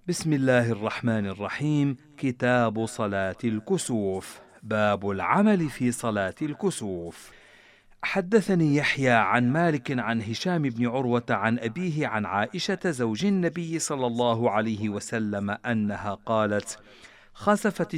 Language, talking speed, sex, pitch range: Arabic, 110 wpm, male, 105-150 Hz